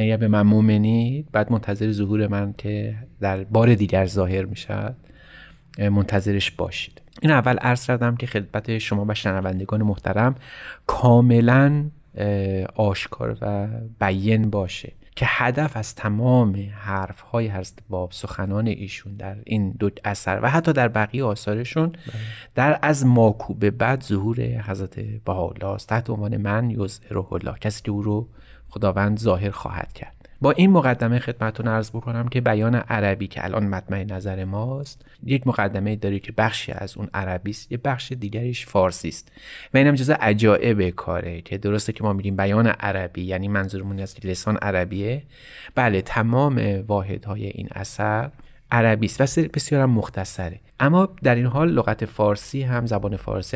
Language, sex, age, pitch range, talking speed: Persian, male, 30-49, 100-120 Hz, 150 wpm